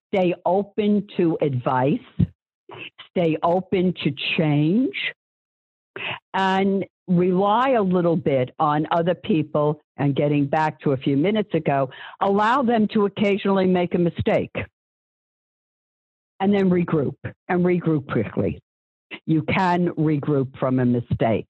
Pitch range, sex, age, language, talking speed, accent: 145-185 Hz, female, 50-69, English, 120 wpm, American